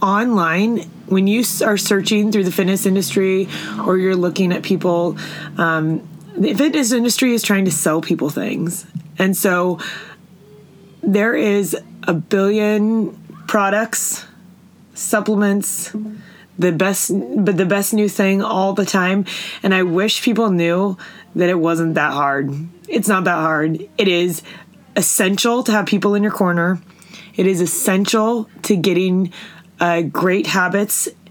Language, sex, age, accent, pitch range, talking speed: English, female, 20-39, American, 170-200 Hz, 140 wpm